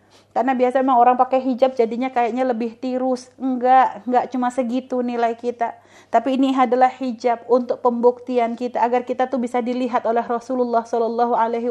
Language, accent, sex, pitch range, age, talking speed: Indonesian, native, female, 250-315 Hz, 30-49, 160 wpm